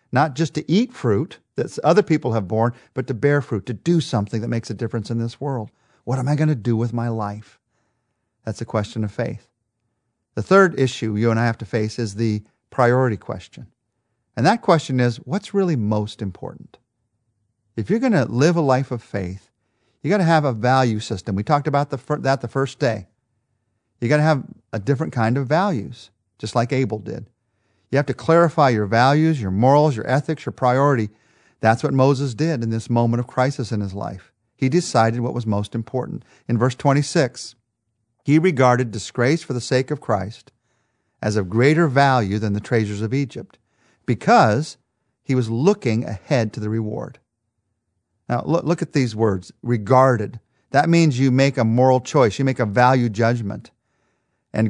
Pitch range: 110-140 Hz